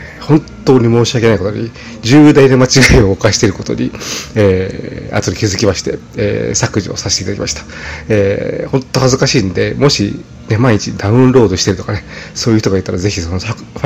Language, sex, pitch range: Japanese, male, 95-125 Hz